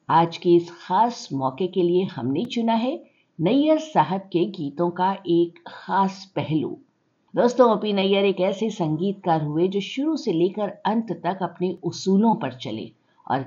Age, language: 50-69, Hindi